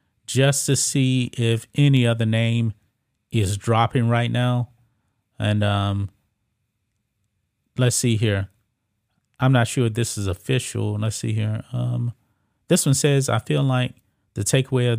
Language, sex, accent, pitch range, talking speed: English, male, American, 110-125 Hz, 145 wpm